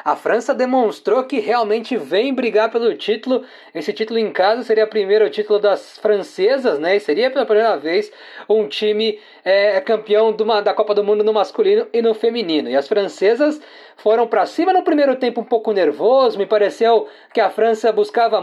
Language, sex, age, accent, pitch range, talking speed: Portuguese, male, 20-39, Brazilian, 220-295 Hz, 180 wpm